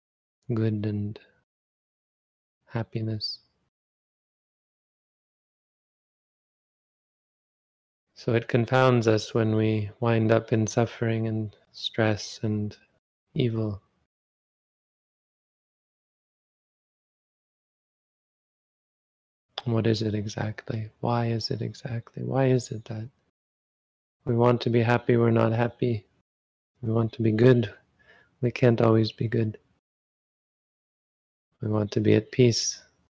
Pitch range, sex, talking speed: 105-115 Hz, male, 95 wpm